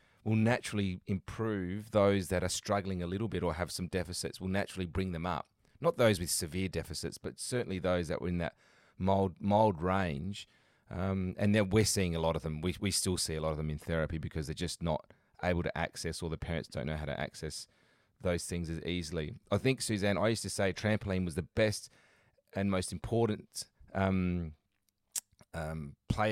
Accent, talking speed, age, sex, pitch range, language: Australian, 205 wpm, 30-49, male, 85-100 Hz, English